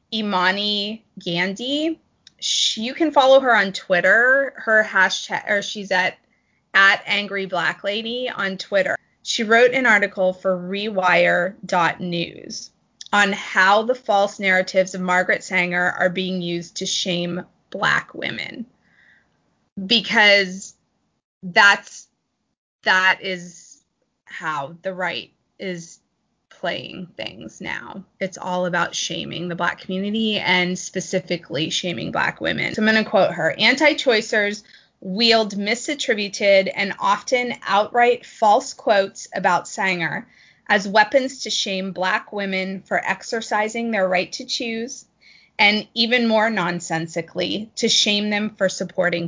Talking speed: 120 wpm